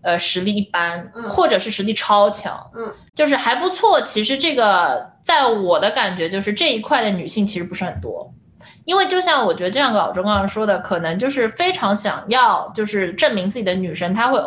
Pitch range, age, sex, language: 180-250 Hz, 20-39, female, Chinese